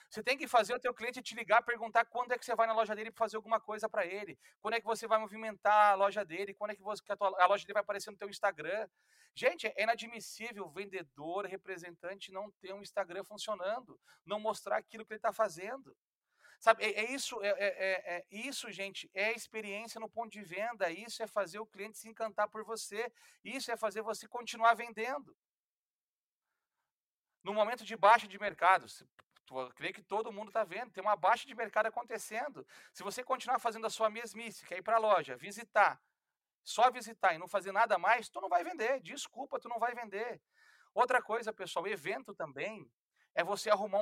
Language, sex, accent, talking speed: Portuguese, male, Brazilian, 210 wpm